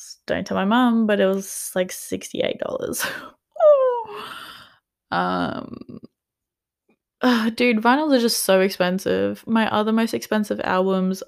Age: 20-39